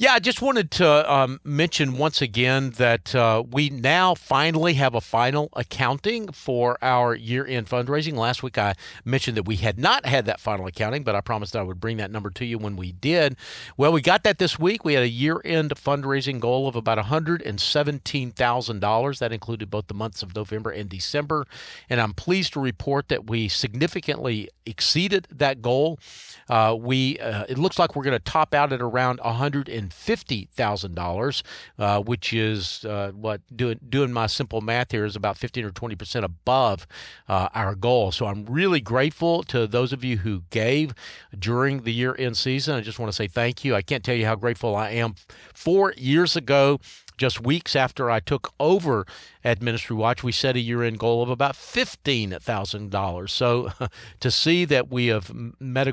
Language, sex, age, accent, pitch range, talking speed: English, male, 50-69, American, 110-140 Hz, 190 wpm